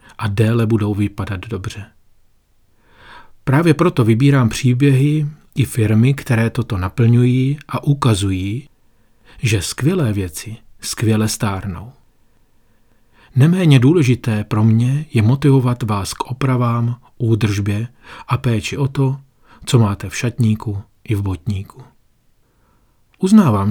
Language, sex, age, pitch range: Czech, male, 40-59, 105-135 Hz